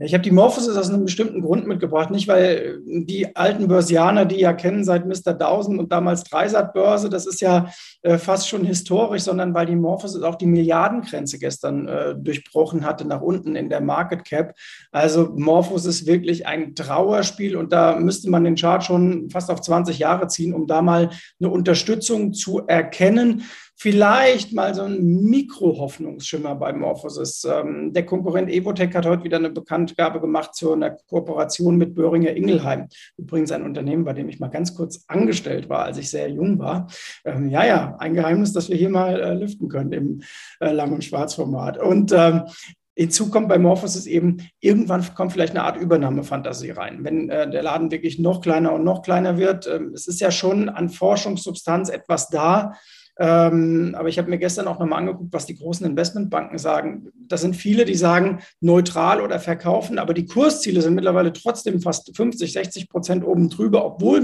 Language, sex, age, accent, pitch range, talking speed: German, male, 50-69, German, 165-190 Hz, 180 wpm